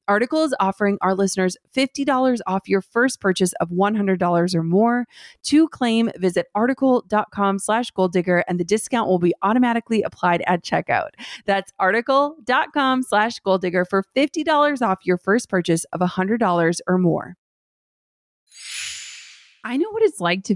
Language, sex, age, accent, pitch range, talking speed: English, female, 30-49, American, 175-235 Hz, 150 wpm